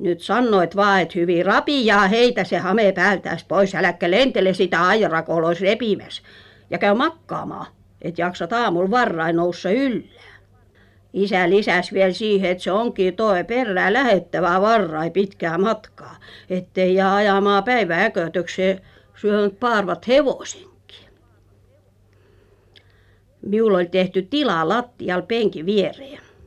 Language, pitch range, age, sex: Finnish, 160-225 Hz, 50-69, female